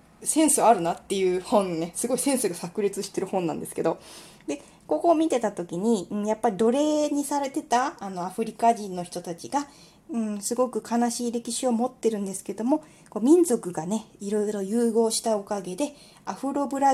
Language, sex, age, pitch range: Japanese, female, 20-39, 180-245 Hz